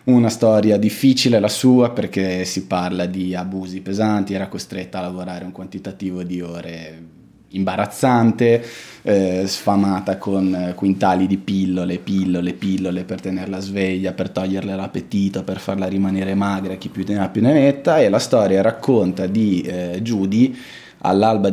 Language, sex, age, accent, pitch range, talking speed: Italian, male, 20-39, native, 95-105 Hz, 140 wpm